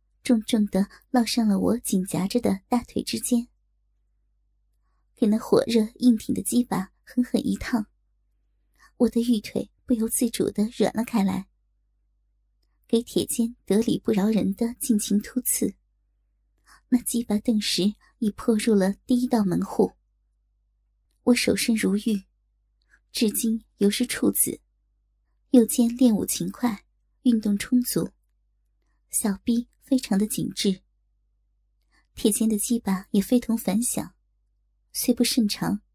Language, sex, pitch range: Chinese, male, 205-245 Hz